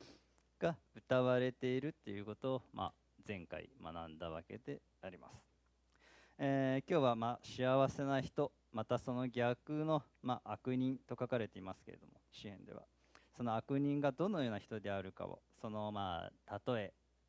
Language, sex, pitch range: Japanese, male, 95-130 Hz